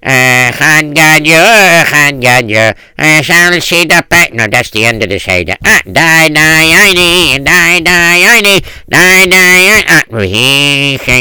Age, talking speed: 60-79, 145 wpm